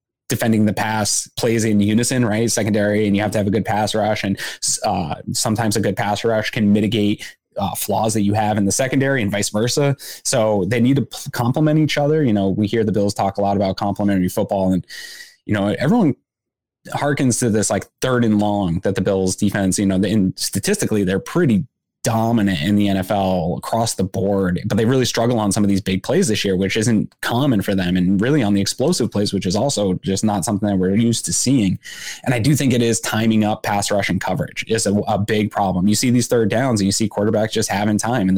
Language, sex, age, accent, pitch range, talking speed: English, male, 20-39, American, 100-115 Hz, 230 wpm